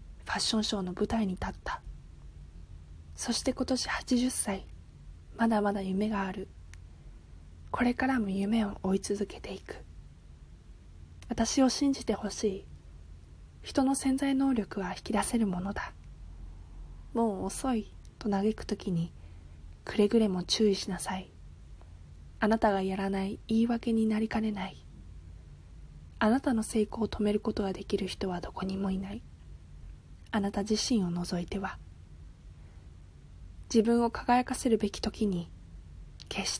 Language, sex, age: Japanese, female, 20-39